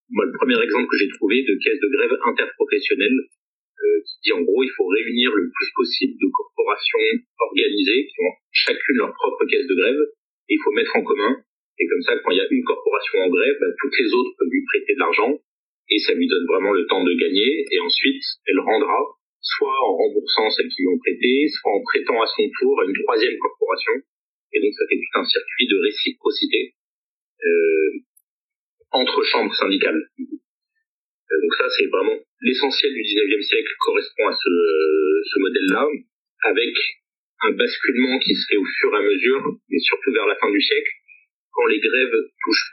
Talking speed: 195 wpm